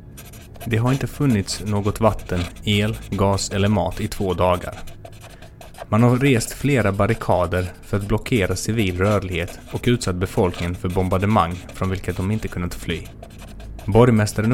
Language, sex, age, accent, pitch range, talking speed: Swedish, male, 20-39, native, 90-115 Hz, 145 wpm